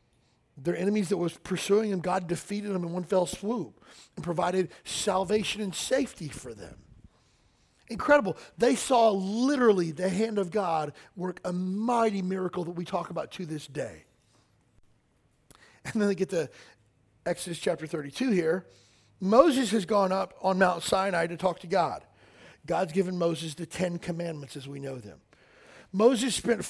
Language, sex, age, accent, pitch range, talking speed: English, male, 40-59, American, 160-205 Hz, 160 wpm